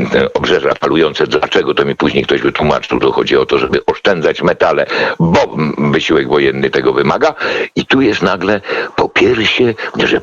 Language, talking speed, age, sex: Polish, 160 wpm, 60-79, male